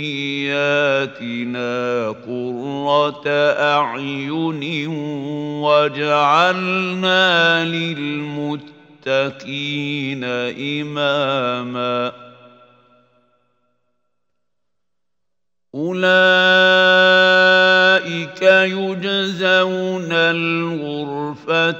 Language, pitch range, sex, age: Arabic, 125-165 Hz, male, 50-69